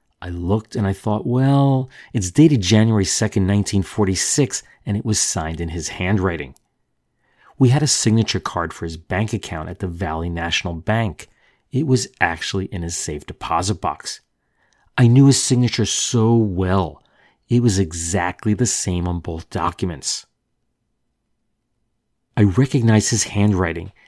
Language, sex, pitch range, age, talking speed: English, male, 90-120 Hz, 40-59, 145 wpm